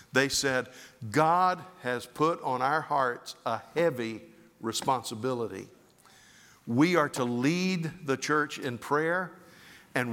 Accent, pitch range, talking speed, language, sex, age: American, 125-150 Hz, 120 wpm, English, male, 50-69